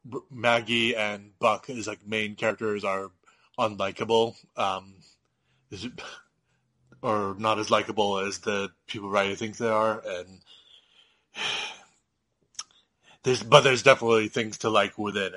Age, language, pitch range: 30-49, English, 100-115 Hz